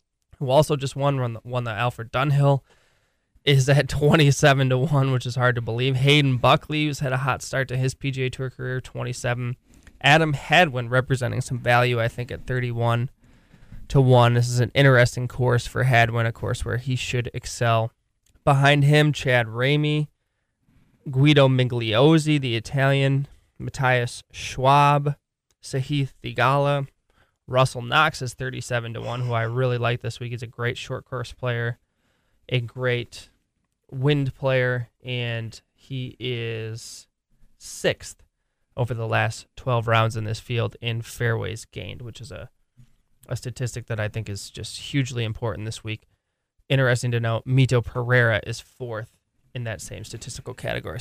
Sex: male